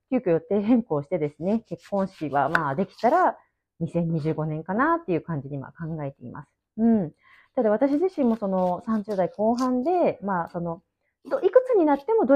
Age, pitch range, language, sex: 30-49, 170-255 Hz, Japanese, female